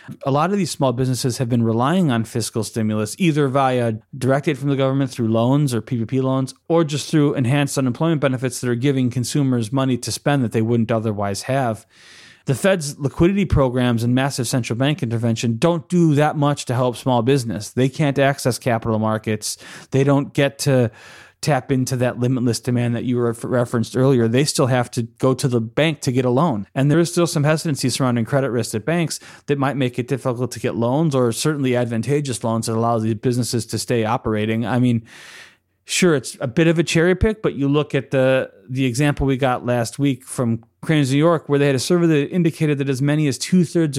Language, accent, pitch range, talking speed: English, American, 120-145 Hz, 215 wpm